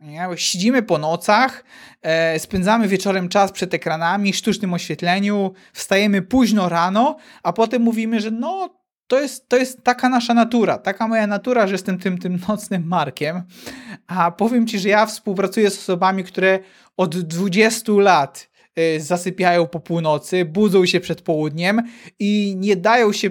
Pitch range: 185-225 Hz